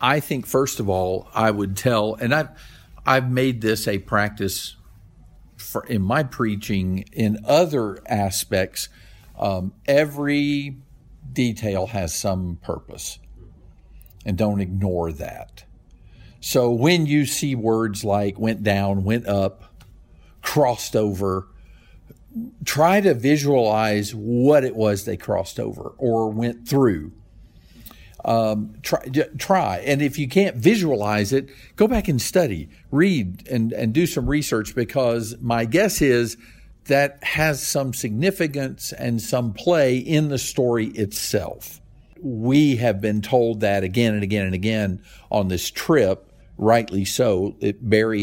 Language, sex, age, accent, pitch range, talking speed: English, male, 50-69, American, 100-130 Hz, 130 wpm